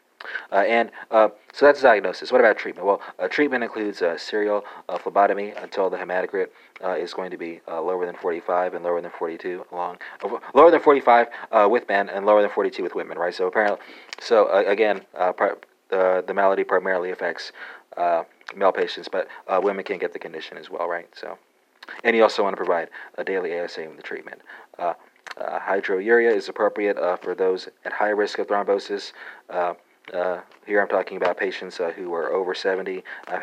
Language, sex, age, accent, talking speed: English, male, 30-49, American, 195 wpm